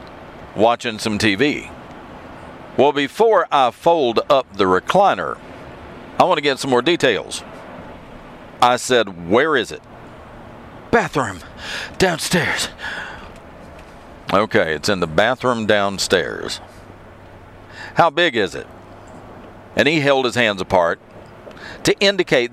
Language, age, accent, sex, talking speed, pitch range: English, 50-69, American, male, 110 wpm, 95-135 Hz